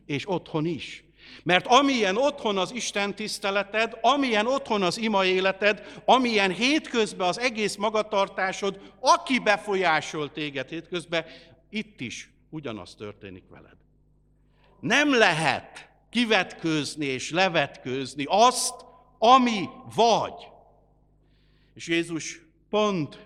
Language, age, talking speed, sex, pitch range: Hungarian, 60-79, 100 wpm, male, 140-200 Hz